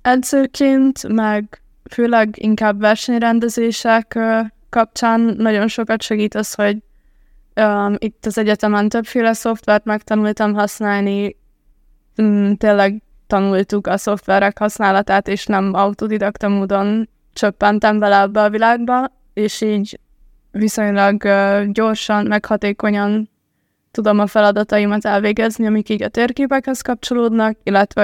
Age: 20-39